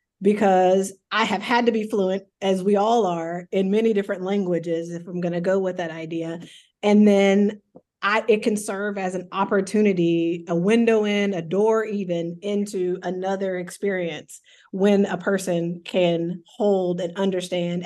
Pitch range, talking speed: 180-215 Hz, 160 wpm